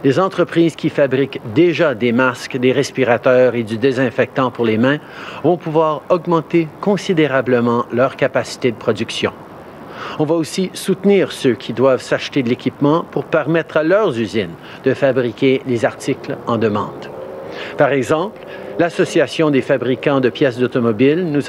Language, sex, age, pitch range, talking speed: French, male, 50-69, 130-160 Hz, 150 wpm